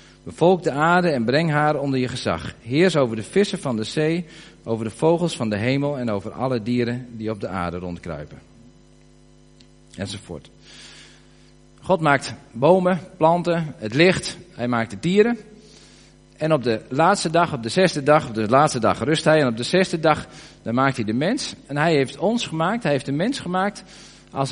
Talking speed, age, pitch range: 190 wpm, 40-59, 120-175 Hz